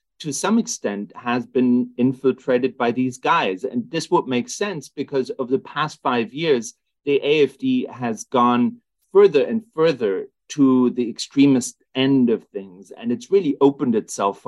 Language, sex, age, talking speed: English, male, 30-49, 160 wpm